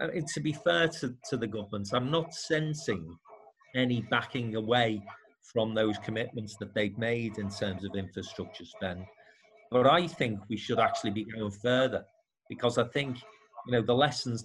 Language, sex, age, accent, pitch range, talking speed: English, male, 40-59, British, 105-125 Hz, 165 wpm